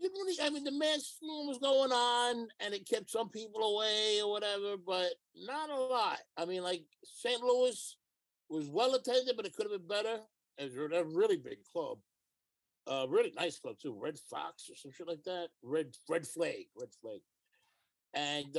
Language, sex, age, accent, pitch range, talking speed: English, male, 60-79, American, 155-240 Hz, 185 wpm